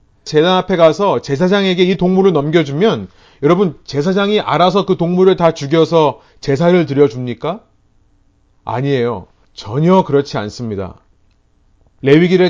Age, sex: 30-49, male